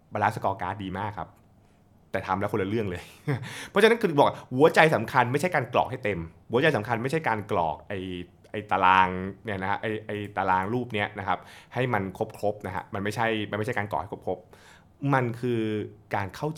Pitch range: 95-120 Hz